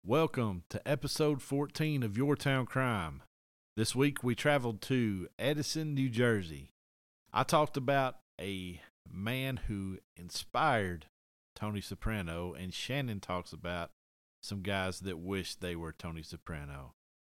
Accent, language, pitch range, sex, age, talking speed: American, English, 90-115 Hz, male, 40-59, 130 wpm